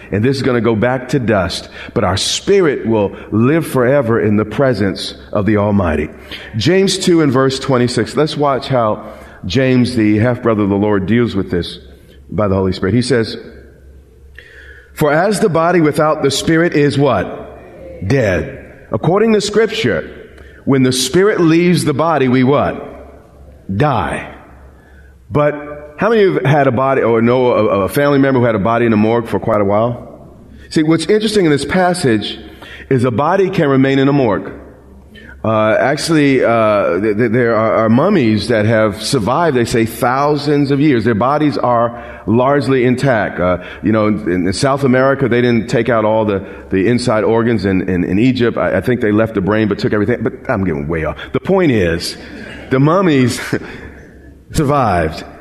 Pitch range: 105-145 Hz